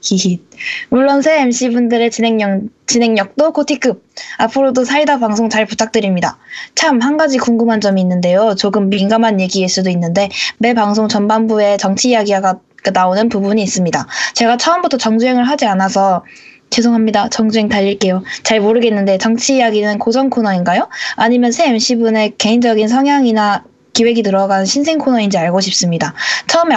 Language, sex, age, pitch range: Korean, female, 20-39, 200-250 Hz